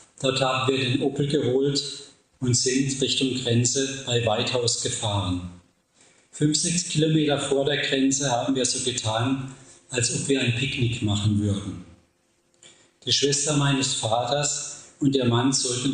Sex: male